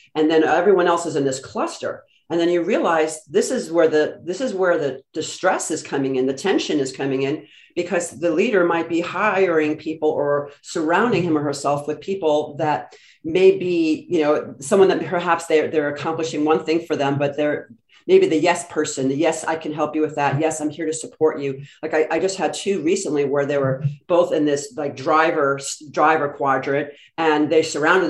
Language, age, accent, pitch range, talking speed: English, 40-59, American, 150-190 Hz, 210 wpm